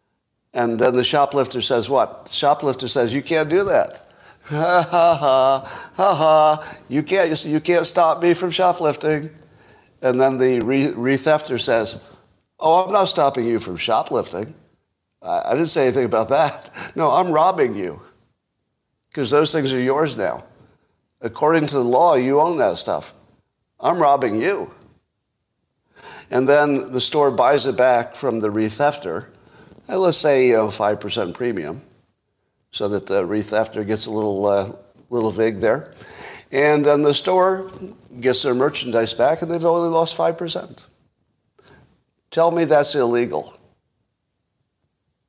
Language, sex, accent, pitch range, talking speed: English, male, American, 125-165 Hz, 145 wpm